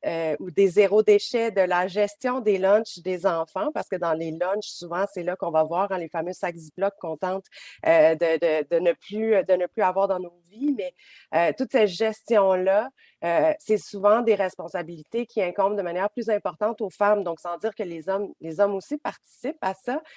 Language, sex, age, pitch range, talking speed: French, female, 40-59, 175-215 Hz, 215 wpm